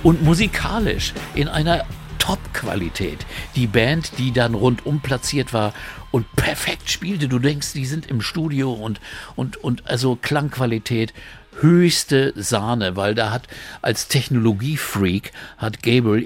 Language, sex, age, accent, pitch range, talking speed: German, male, 60-79, German, 105-130 Hz, 130 wpm